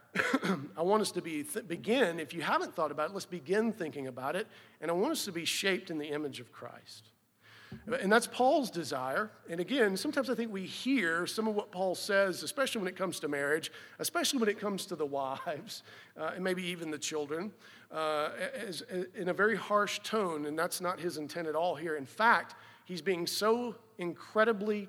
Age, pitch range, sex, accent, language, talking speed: 50-69, 140-205 Hz, male, American, English, 205 wpm